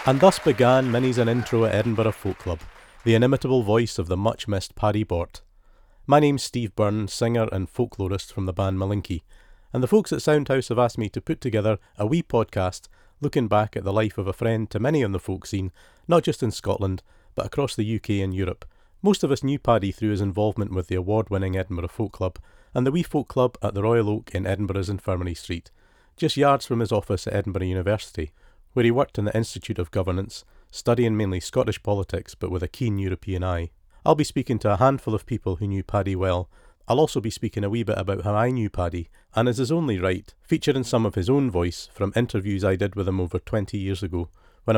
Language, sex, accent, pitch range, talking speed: English, male, British, 95-120 Hz, 220 wpm